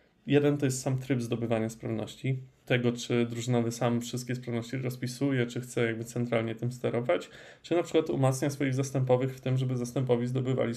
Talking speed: 175 wpm